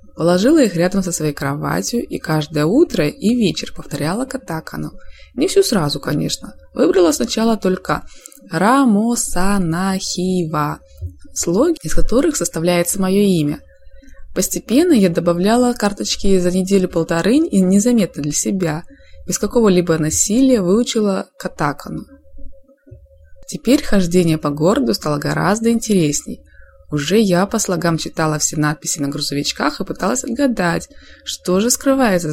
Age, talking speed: 20-39, 120 wpm